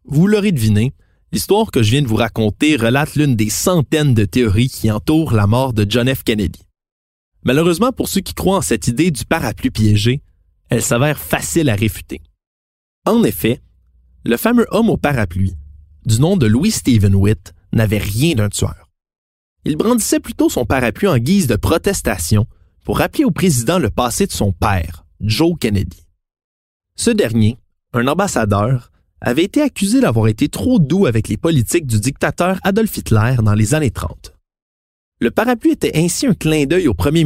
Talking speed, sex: 175 wpm, male